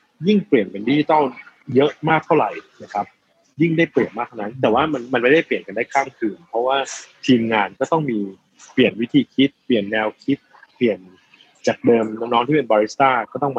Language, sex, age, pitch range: Thai, male, 20-39, 110-140 Hz